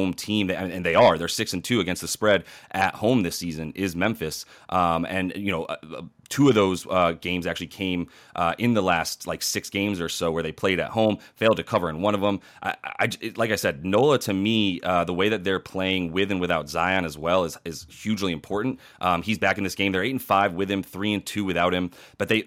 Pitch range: 90-110 Hz